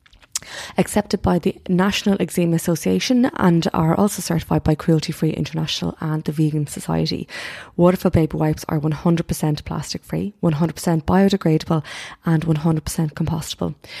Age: 20-39